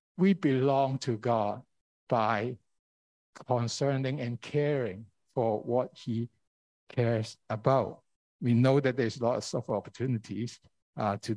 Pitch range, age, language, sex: 105-150 Hz, 60-79, Chinese, male